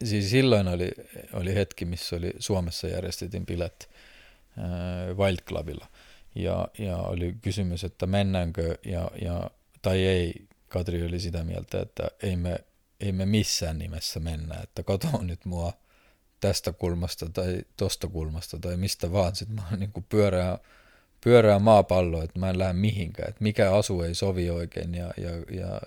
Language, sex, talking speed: Finnish, male, 150 wpm